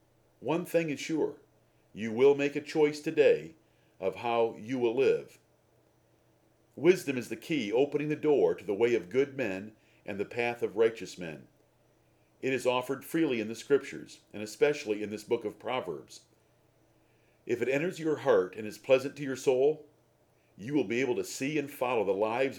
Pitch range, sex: 120-165 Hz, male